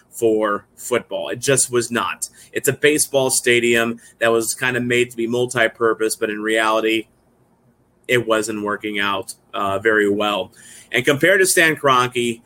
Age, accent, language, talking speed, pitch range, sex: 30-49, American, English, 160 wpm, 115-140 Hz, male